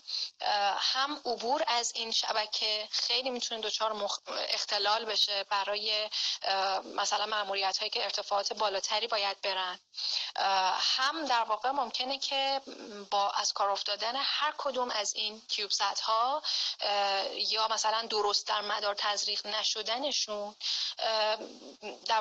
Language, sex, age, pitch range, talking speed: Persian, female, 30-49, 200-245 Hz, 115 wpm